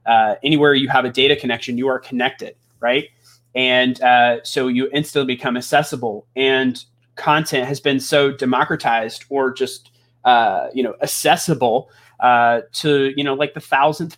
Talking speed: 155 wpm